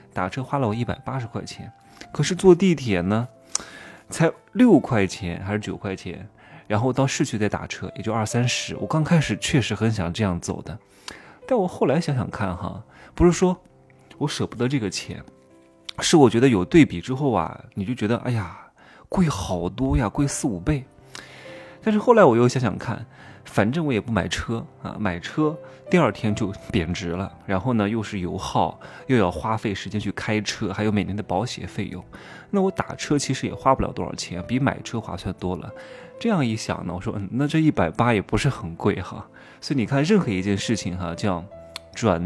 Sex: male